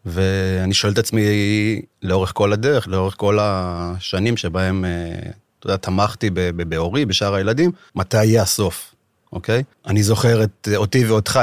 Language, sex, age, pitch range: Hebrew, male, 30-49, 95-110 Hz